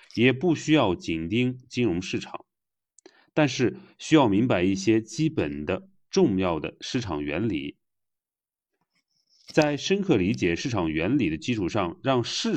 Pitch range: 105-170 Hz